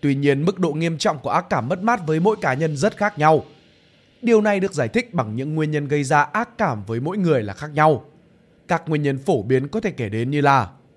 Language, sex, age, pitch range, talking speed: Vietnamese, male, 20-39, 135-190 Hz, 265 wpm